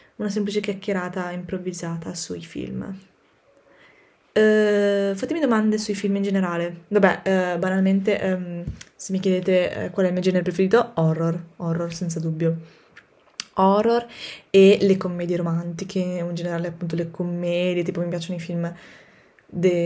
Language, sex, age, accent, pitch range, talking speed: Italian, female, 10-29, native, 165-190 Hz, 140 wpm